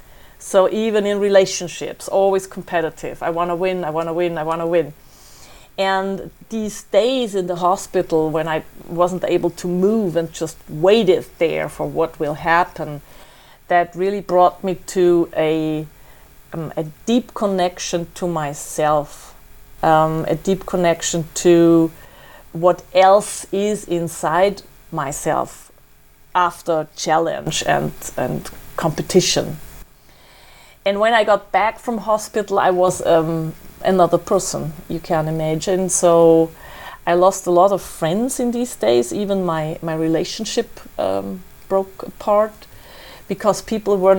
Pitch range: 165-195 Hz